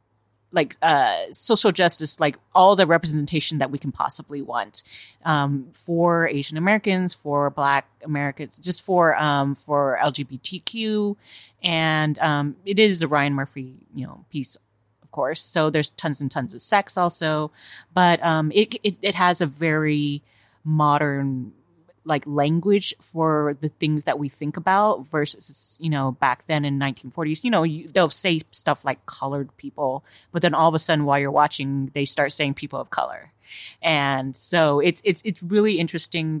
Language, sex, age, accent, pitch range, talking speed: English, female, 30-49, American, 140-175 Hz, 165 wpm